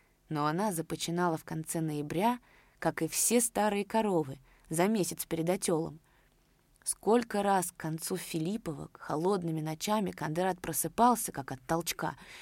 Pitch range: 155-185 Hz